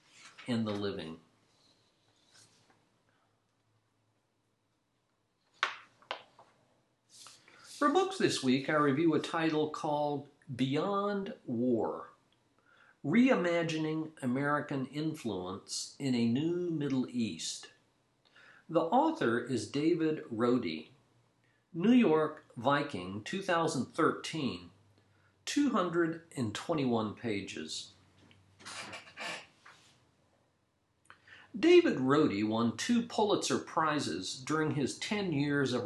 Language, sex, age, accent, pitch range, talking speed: English, male, 50-69, American, 110-165 Hz, 75 wpm